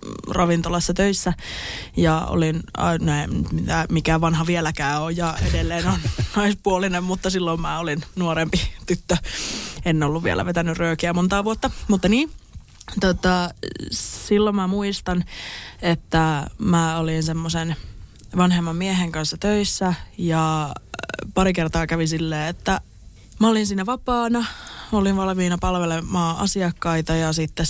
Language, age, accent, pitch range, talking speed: Finnish, 20-39, native, 160-185 Hz, 115 wpm